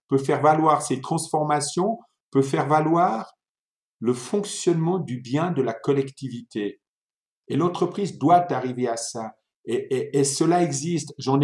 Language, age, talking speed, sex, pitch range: French, 50-69, 140 wpm, male, 130-160 Hz